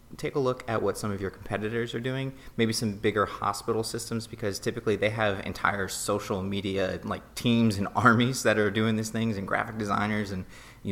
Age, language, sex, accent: 30-49, English, male, American